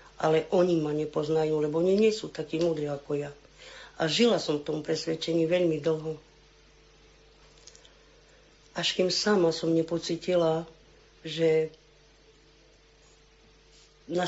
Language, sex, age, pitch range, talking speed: Slovak, female, 50-69, 160-190 Hz, 115 wpm